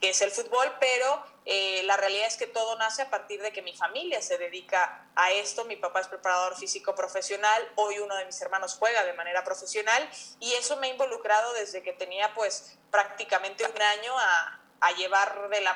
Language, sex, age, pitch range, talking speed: Spanish, female, 20-39, 195-245 Hz, 200 wpm